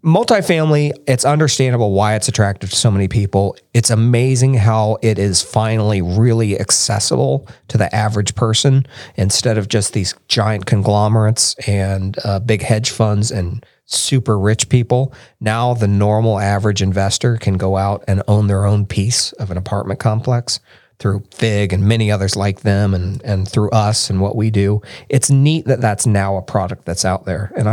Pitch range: 100-120 Hz